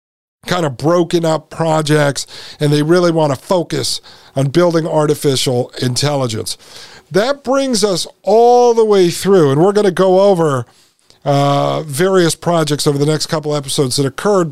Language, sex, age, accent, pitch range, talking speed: English, male, 50-69, American, 145-180 Hz, 155 wpm